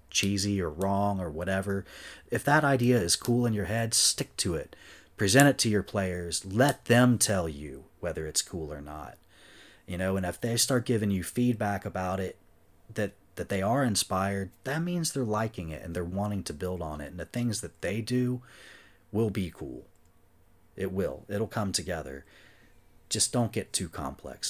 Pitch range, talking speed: 80-100 Hz, 190 wpm